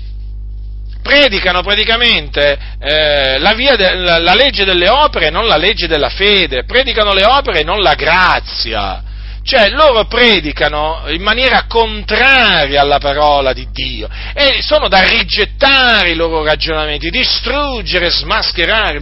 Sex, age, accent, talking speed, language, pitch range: male, 40-59, native, 135 wpm, Italian, 140-220 Hz